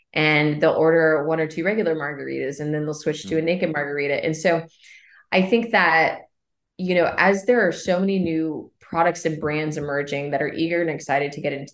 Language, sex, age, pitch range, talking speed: English, female, 20-39, 145-170 Hz, 210 wpm